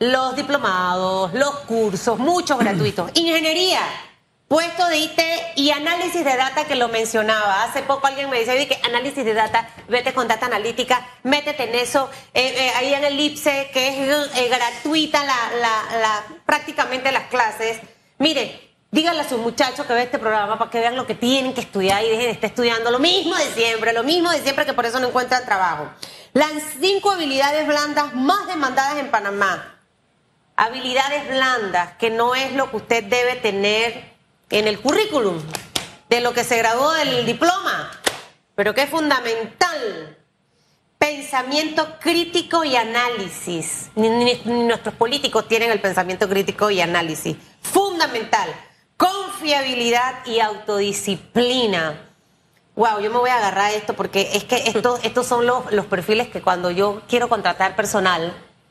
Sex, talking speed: female, 160 wpm